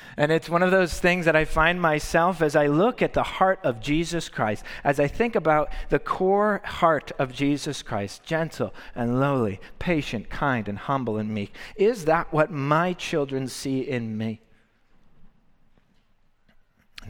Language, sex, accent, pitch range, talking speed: English, male, American, 110-150 Hz, 165 wpm